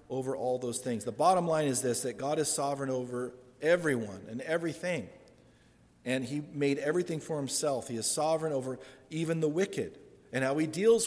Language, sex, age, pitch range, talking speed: English, male, 40-59, 120-150 Hz, 185 wpm